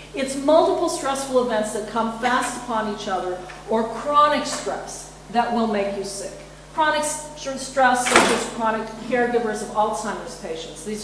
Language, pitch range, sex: English, 215-270 Hz, female